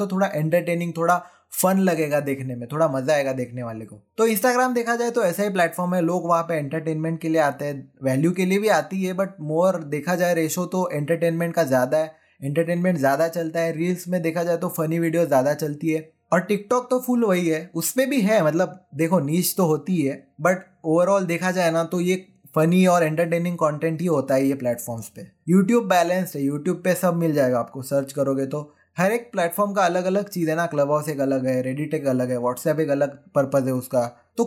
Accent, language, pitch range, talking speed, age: native, Hindi, 140-180 Hz, 170 wpm, 20-39